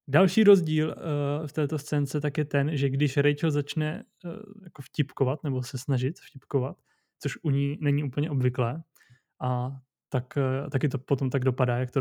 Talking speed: 180 wpm